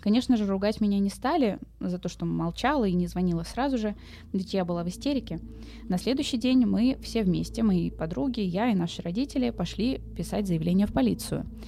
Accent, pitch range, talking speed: native, 175-220 Hz, 190 wpm